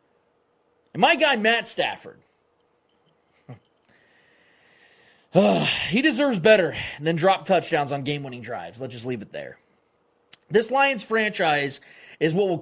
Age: 30-49